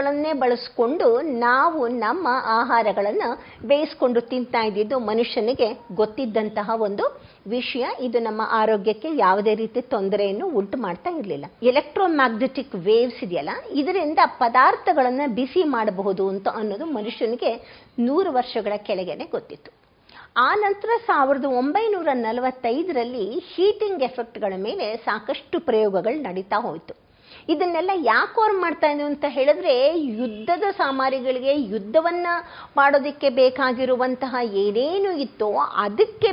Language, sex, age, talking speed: Kannada, female, 50-69, 100 wpm